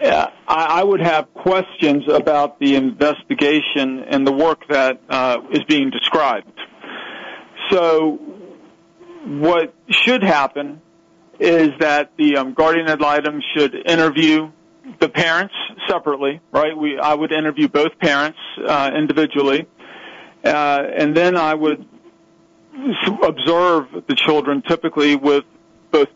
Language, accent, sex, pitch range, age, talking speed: English, American, male, 145-170 Hz, 40-59, 115 wpm